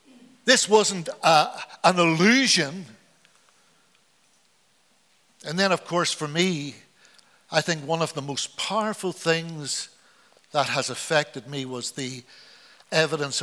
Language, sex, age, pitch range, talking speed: English, male, 60-79, 175-230 Hz, 110 wpm